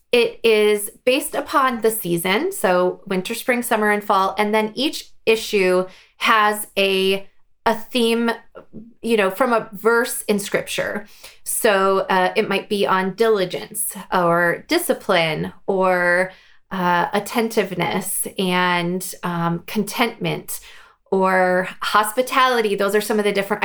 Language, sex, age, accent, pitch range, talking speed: English, female, 20-39, American, 190-235 Hz, 125 wpm